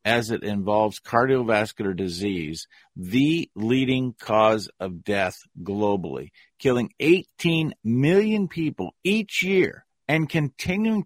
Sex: male